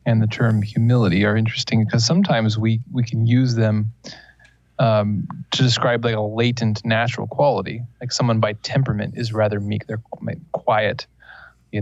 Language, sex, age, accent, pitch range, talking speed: English, male, 20-39, American, 110-125 Hz, 155 wpm